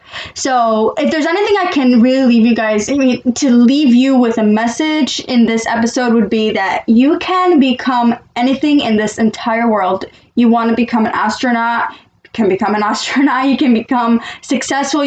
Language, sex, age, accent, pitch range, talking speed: English, female, 10-29, American, 230-275 Hz, 185 wpm